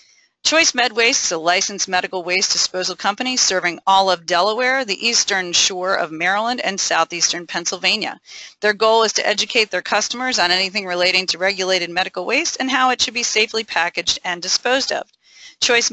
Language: English